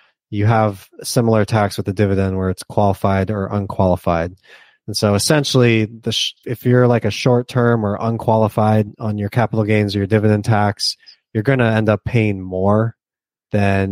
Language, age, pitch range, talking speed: English, 20-39, 100-120 Hz, 175 wpm